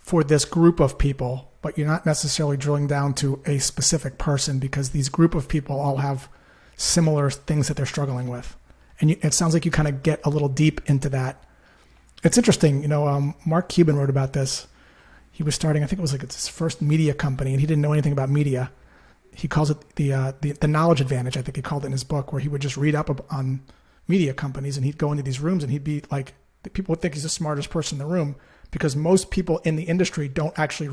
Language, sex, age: English, male, 30-49